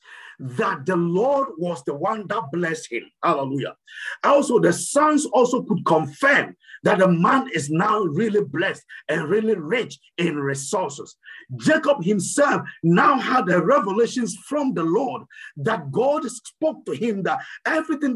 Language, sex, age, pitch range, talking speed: English, male, 50-69, 175-265 Hz, 145 wpm